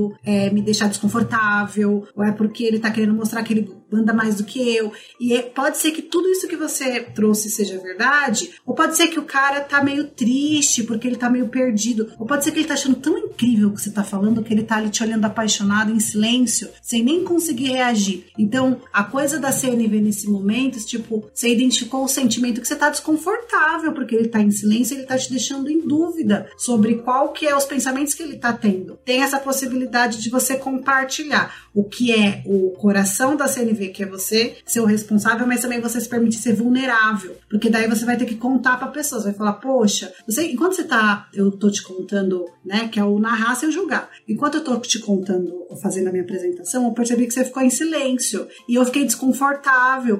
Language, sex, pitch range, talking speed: Portuguese, female, 210-265 Hz, 220 wpm